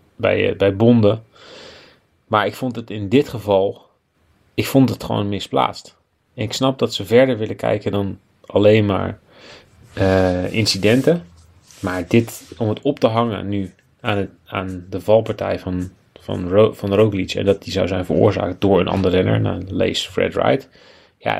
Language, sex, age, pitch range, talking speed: Dutch, male, 30-49, 95-110 Hz, 170 wpm